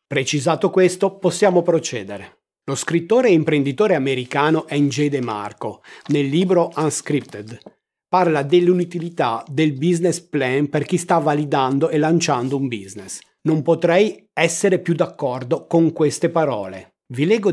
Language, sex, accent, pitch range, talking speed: Italian, male, native, 135-170 Hz, 125 wpm